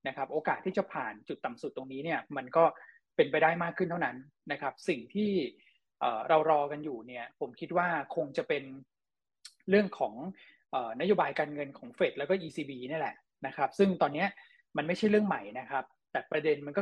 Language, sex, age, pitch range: Thai, male, 20-39, 145-195 Hz